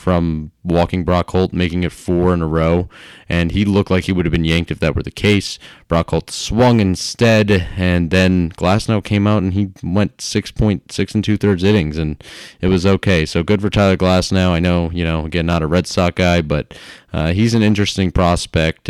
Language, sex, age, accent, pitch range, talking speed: English, male, 20-39, American, 85-100 Hz, 215 wpm